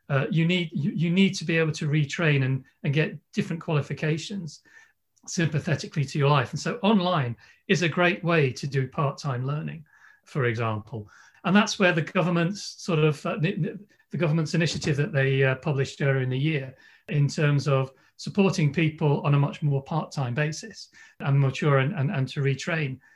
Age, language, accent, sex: 40-59, English, British, male